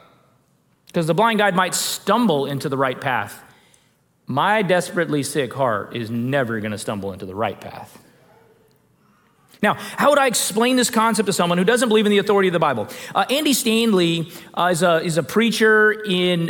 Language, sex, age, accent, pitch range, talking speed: English, male, 30-49, American, 170-220 Hz, 185 wpm